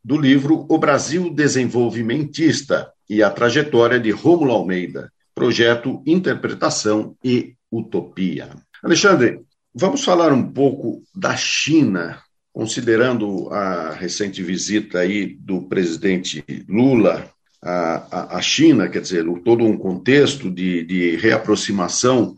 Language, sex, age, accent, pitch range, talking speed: Portuguese, male, 50-69, Brazilian, 110-145 Hz, 115 wpm